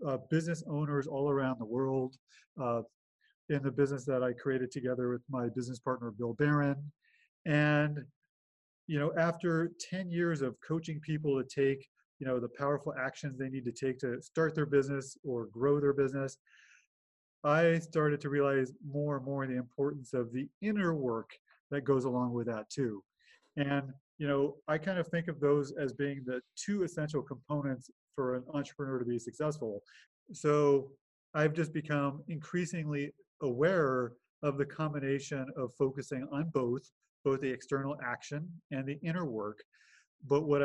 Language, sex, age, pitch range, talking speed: English, male, 30-49, 130-155 Hz, 165 wpm